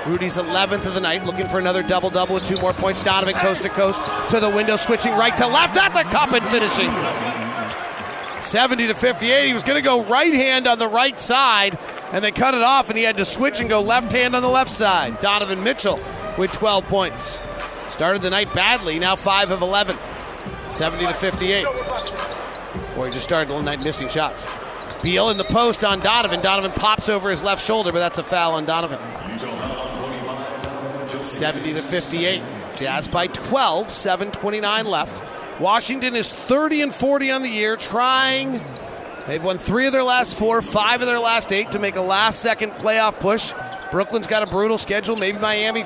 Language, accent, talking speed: English, American, 190 wpm